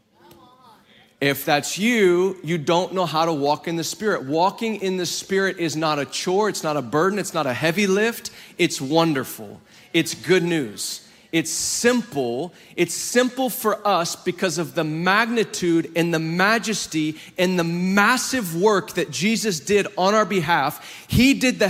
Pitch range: 150-190 Hz